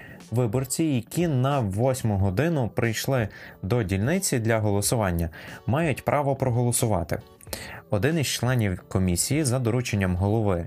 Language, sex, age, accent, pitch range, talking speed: Ukrainian, male, 20-39, native, 95-125 Hz, 110 wpm